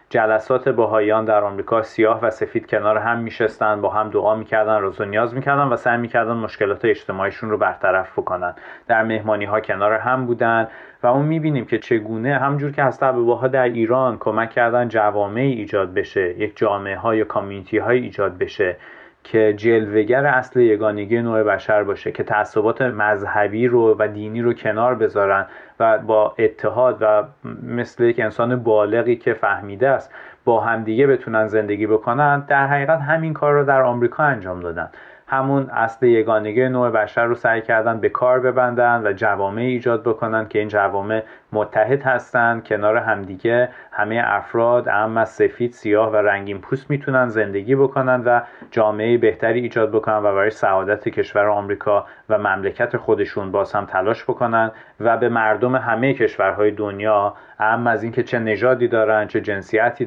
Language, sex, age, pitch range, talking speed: Persian, male, 30-49, 105-125 Hz, 160 wpm